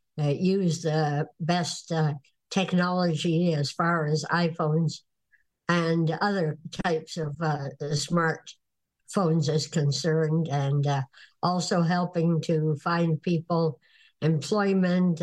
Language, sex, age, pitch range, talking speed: English, male, 60-79, 155-185 Hz, 100 wpm